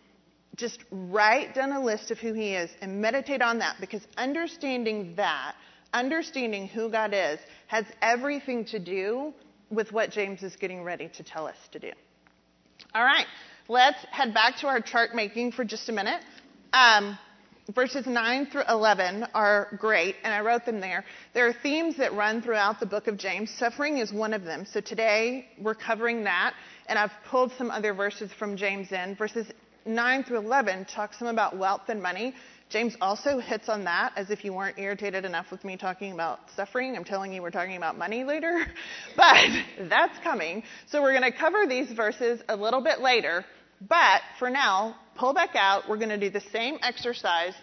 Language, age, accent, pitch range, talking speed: English, 30-49, American, 205-255 Hz, 190 wpm